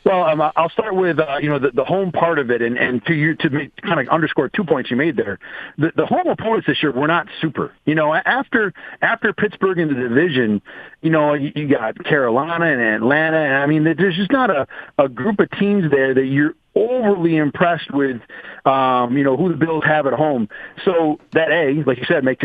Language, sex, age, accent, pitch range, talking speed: English, male, 40-59, American, 135-195 Hz, 235 wpm